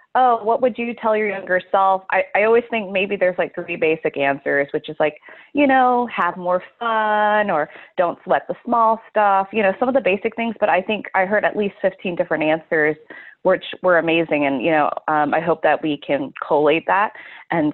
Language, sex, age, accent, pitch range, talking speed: English, female, 20-39, American, 150-200 Hz, 215 wpm